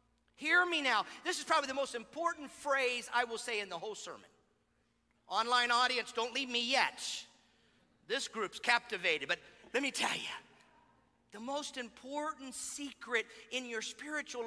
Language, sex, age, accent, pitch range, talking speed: English, male, 50-69, American, 255-345 Hz, 160 wpm